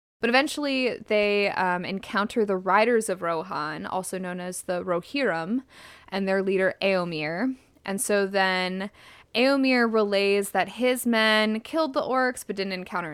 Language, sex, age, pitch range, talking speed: English, female, 20-39, 185-230 Hz, 145 wpm